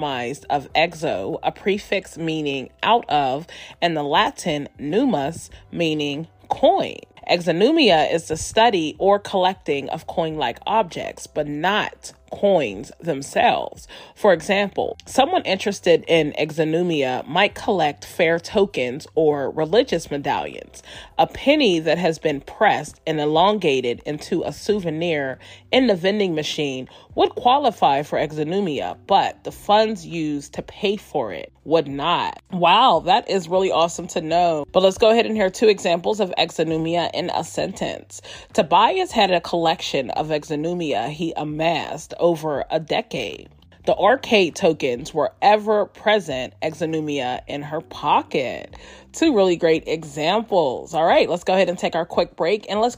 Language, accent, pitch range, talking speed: English, American, 155-200 Hz, 140 wpm